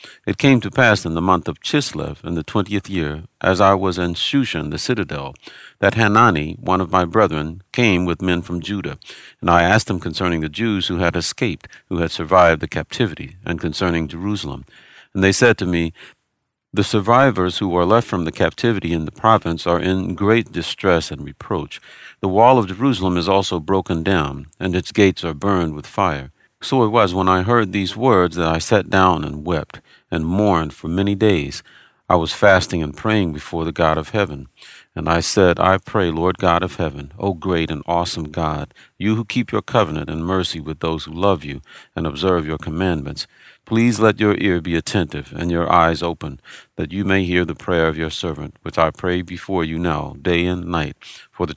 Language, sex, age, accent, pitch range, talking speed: English, male, 50-69, American, 80-100 Hz, 205 wpm